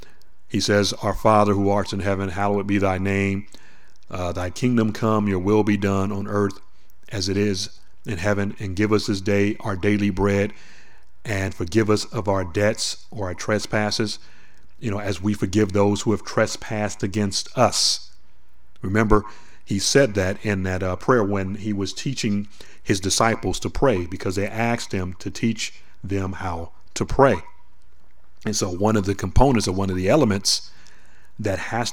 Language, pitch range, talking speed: English, 95-105 Hz, 175 wpm